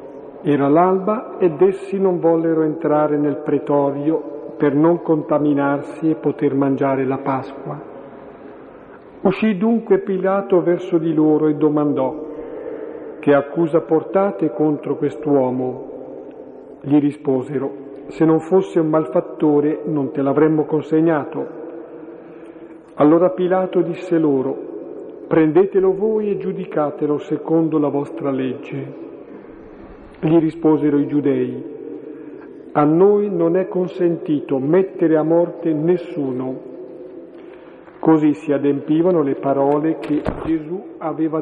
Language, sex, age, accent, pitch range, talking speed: Italian, male, 50-69, native, 145-165 Hz, 105 wpm